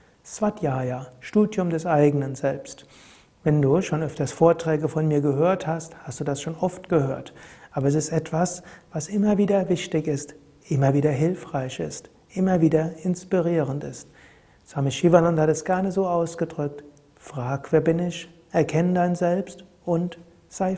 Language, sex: German, male